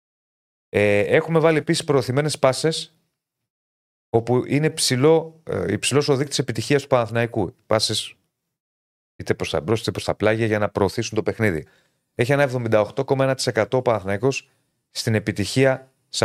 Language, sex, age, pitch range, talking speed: Greek, male, 30-49, 110-140 Hz, 135 wpm